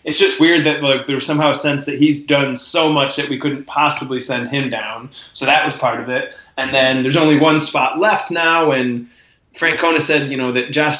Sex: male